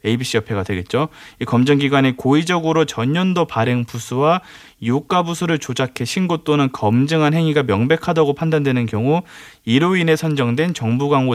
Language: Korean